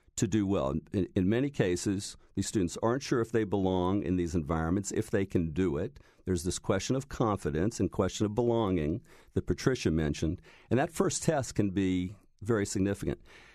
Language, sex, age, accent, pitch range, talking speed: English, male, 50-69, American, 95-115 Hz, 180 wpm